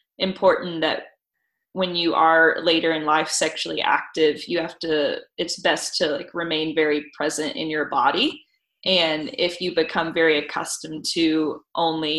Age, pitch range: 20-39, 155-175 Hz